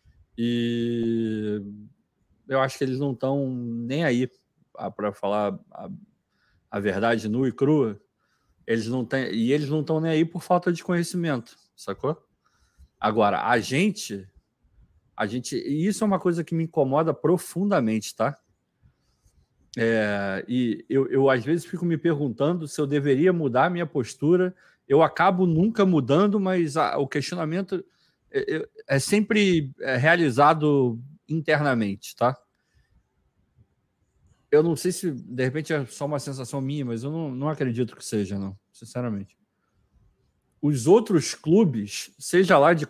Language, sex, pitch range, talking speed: Portuguese, male, 120-165 Hz, 140 wpm